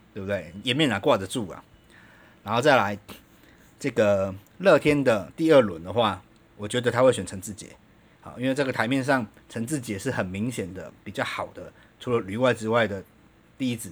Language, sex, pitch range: Chinese, male, 100-120 Hz